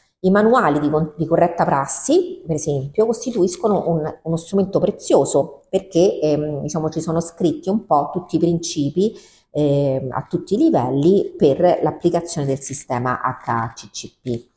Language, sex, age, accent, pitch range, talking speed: Italian, female, 40-59, native, 140-175 Hz, 140 wpm